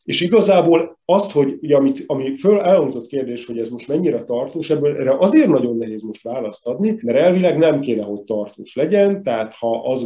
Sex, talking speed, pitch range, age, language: male, 190 wpm, 110-145 Hz, 40-59, Hungarian